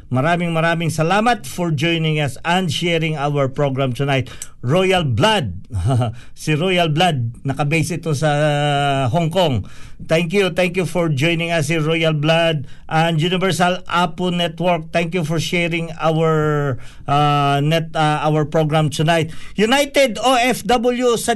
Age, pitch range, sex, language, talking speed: 50-69, 145-190 Hz, male, Filipino, 140 wpm